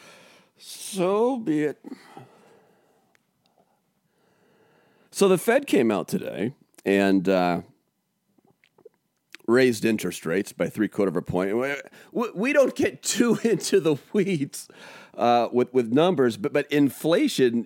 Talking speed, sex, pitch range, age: 115 wpm, male, 115-160 Hz, 40-59